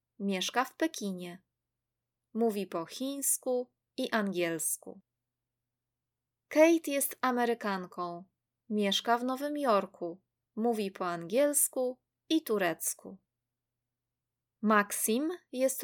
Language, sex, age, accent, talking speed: Polish, female, 20-39, native, 85 wpm